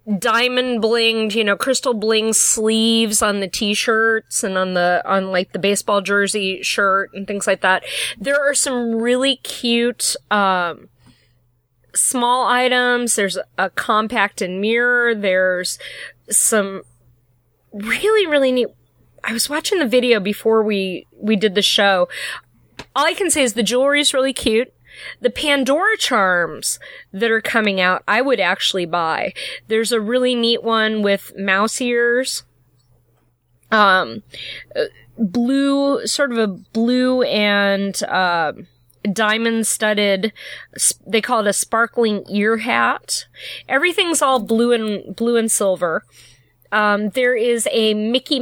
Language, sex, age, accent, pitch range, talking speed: English, female, 30-49, American, 195-245 Hz, 140 wpm